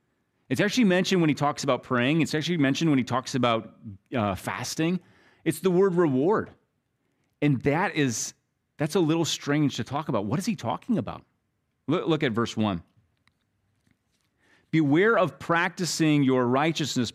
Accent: American